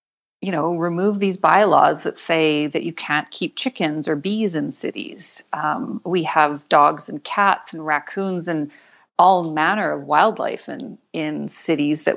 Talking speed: 165 wpm